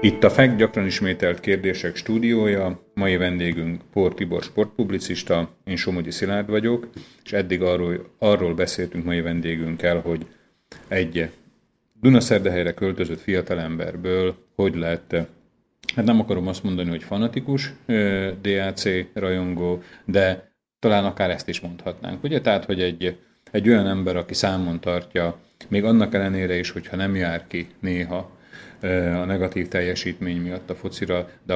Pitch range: 85-100 Hz